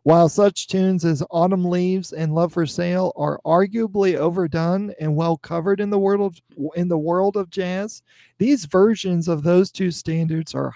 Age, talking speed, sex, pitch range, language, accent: 40-59, 160 wpm, male, 160-185 Hz, English, American